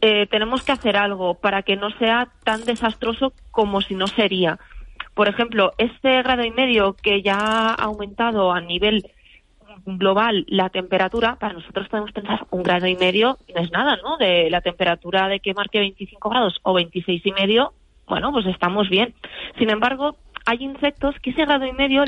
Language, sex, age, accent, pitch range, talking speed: Spanish, female, 20-39, Spanish, 195-235 Hz, 180 wpm